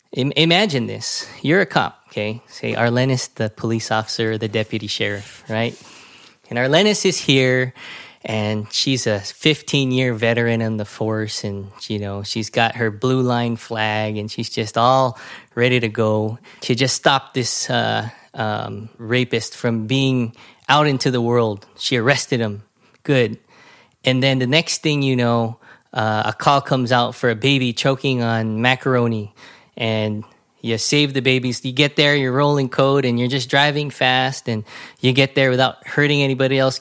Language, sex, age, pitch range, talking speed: English, male, 20-39, 115-135 Hz, 165 wpm